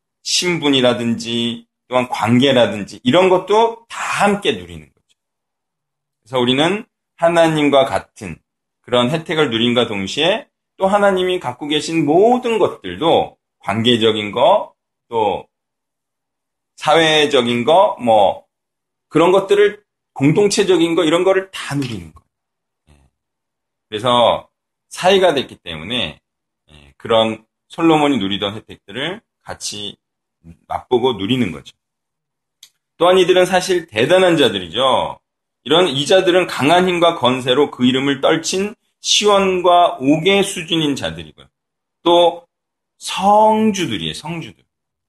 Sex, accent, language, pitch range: male, native, Korean, 115-180 Hz